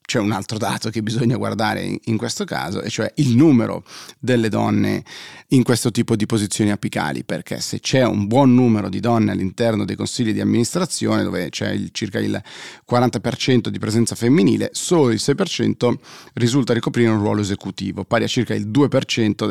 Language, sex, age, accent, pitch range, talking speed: Italian, male, 30-49, native, 105-120 Hz, 175 wpm